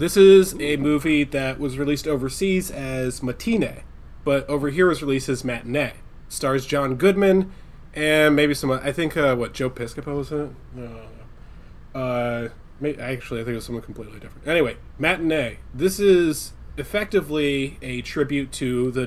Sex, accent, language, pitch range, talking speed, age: male, American, English, 120-150 Hz, 165 wpm, 30-49